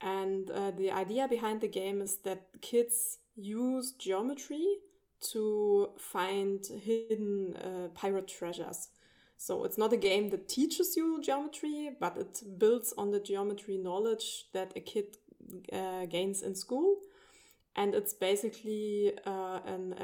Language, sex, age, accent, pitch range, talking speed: English, female, 20-39, German, 190-225 Hz, 135 wpm